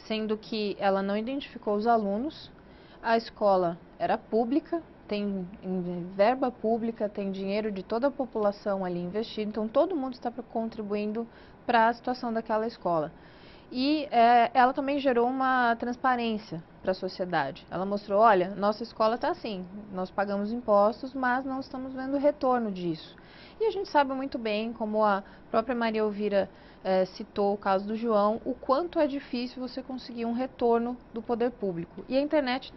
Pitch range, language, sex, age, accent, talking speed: 205-255 Hz, Portuguese, female, 20-39, Brazilian, 165 wpm